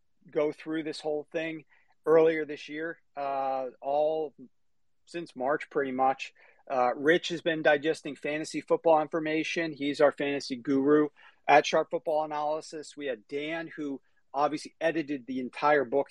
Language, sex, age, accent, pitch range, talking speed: English, male, 40-59, American, 135-160 Hz, 145 wpm